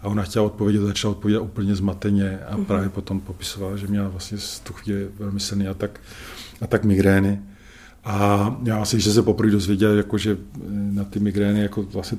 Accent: native